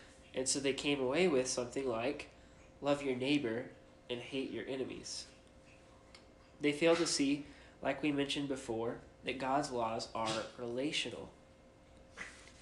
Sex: male